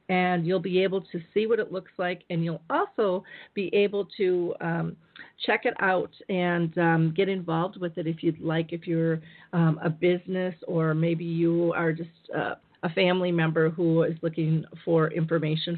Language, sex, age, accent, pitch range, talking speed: English, female, 40-59, American, 165-195 Hz, 185 wpm